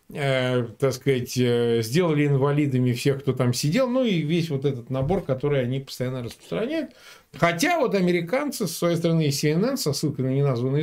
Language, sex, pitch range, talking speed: Russian, male, 135-185 Hz, 175 wpm